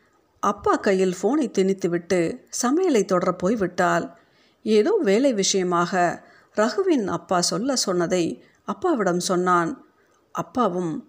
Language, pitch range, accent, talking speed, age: Tamil, 175-235 Hz, native, 95 wpm, 50-69